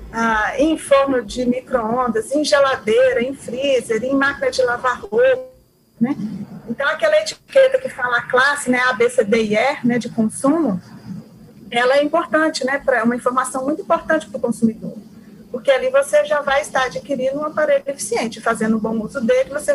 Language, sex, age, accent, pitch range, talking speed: Portuguese, female, 40-59, Brazilian, 225-280 Hz, 170 wpm